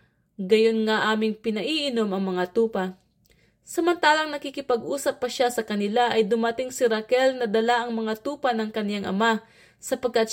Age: 20-39